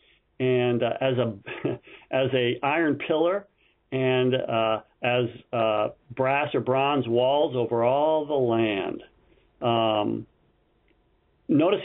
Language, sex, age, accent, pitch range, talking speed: English, male, 50-69, American, 120-165 Hz, 110 wpm